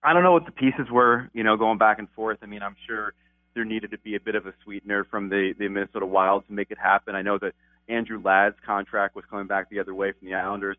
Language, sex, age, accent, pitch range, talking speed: English, male, 30-49, American, 100-115 Hz, 280 wpm